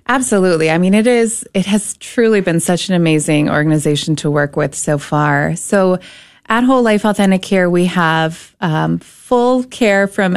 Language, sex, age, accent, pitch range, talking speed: English, female, 20-39, American, 165-200 Hz, 175 wpm